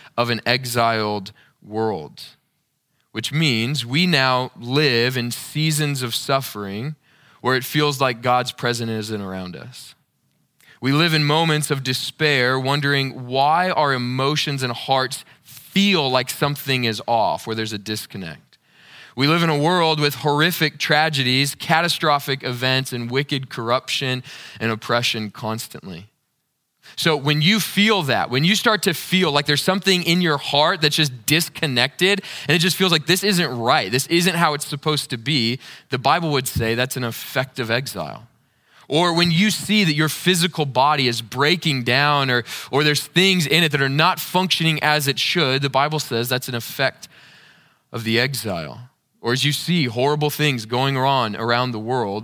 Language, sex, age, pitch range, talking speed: English, male, 20-39, 125-155 Hz, 170 wpm